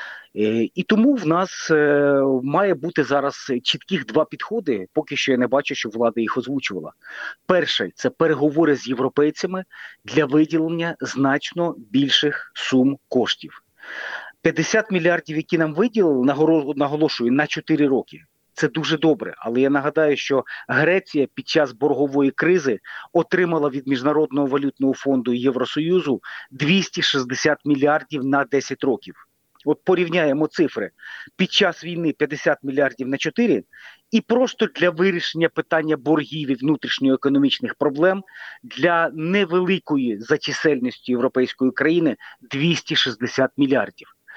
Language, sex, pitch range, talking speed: Ukrainian, male, 140-170 Hz, 125 wpm